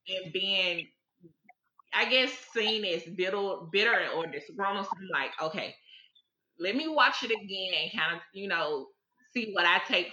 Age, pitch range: 20-39, 190-280 Hz